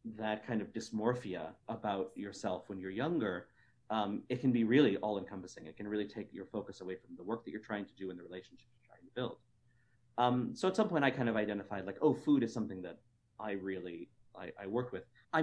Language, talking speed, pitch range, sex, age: English, 230 wpm, 100-125 Hz, male, 40-59